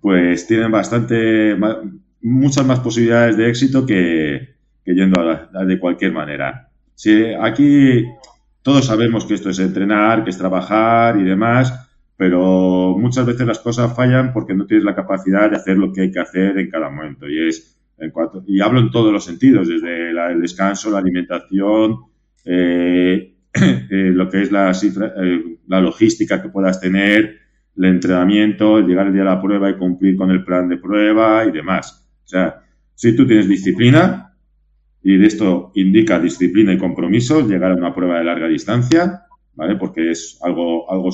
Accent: Spanish